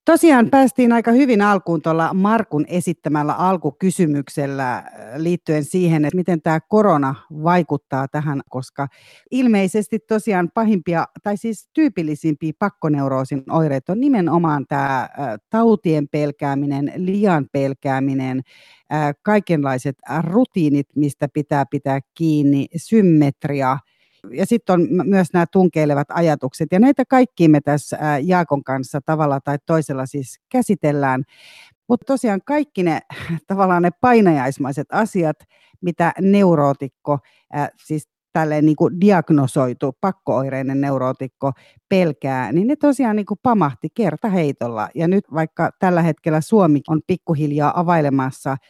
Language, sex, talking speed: Finnish, female, 115 wpm